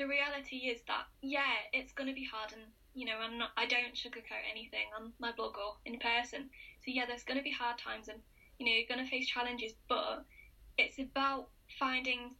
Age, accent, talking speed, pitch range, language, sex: 10-29, British, 220 wpm, 235-265 Hz, English, female